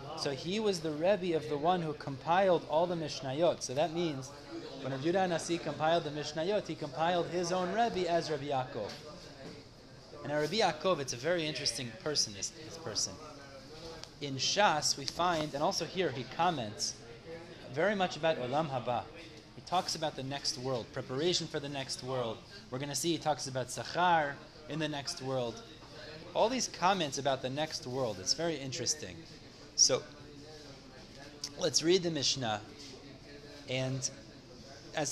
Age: 30-49